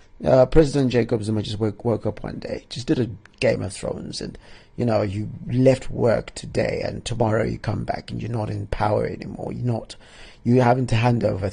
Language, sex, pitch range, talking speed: English, male, 110-135 Hz, 225 wpm